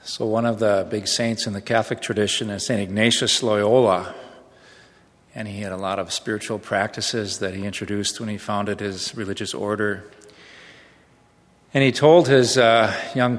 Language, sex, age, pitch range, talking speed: English, male, 40-59, 95-115 Hz, 165 wpm